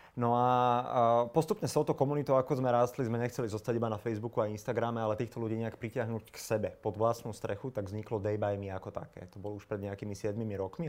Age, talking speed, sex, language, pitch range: 30-49, 215 wpm, male, Slovak, 105-125 Hz